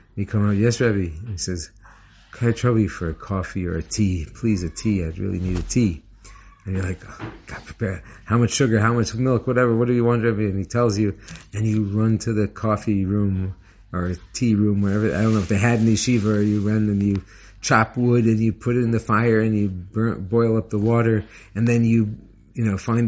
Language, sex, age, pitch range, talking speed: English, male, 50-69, 95-115 Hz, 235 wpm